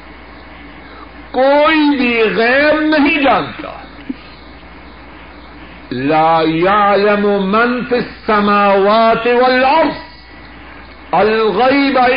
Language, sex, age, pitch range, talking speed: Urdu, male, 60-79, 165-275 Hz, 60 wpm